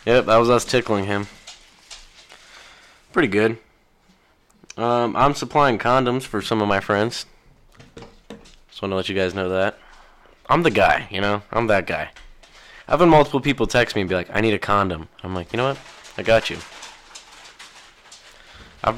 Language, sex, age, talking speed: English, male, 20-39, 175 wpm